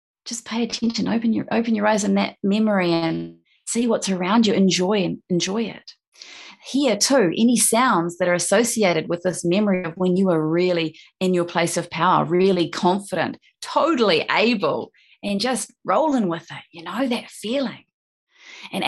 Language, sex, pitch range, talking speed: English, female, 180-225 Hz, 170 wpm